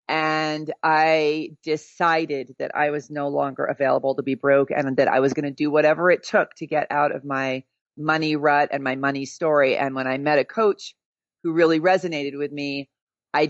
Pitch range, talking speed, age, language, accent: 140-165 Hz, 200 wpm, 40-59, English, American